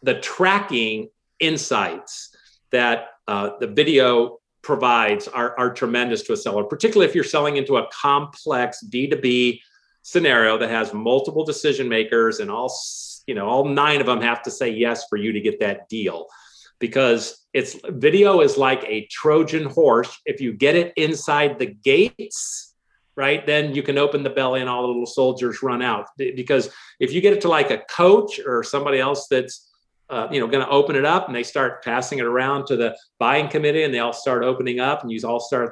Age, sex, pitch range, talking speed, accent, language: 40-59, male, 125-185 Hz, 200 wpm, American, English